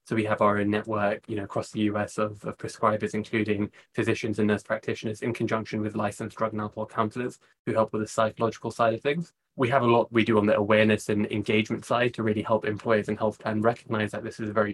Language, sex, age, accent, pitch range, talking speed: English, male, 20-39, British, 105-110 Hz, 245 wpm